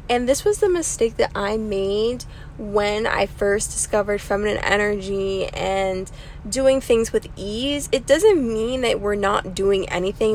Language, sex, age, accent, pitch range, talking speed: English, female, 20-39, American, 195-260 Hz, 155 wpm